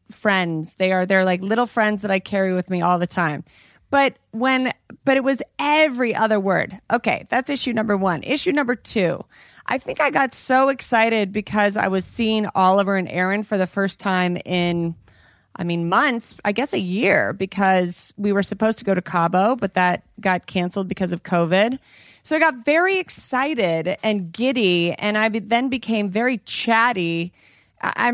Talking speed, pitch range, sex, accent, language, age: 180 wpm, 185-235 Hz, female, American, English, 30-49